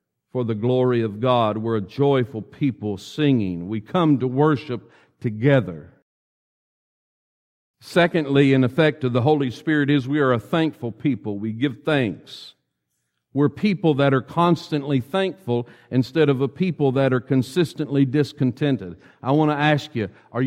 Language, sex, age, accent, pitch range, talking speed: English, male, 50-69, American, 115-150 Hz, 150 wpm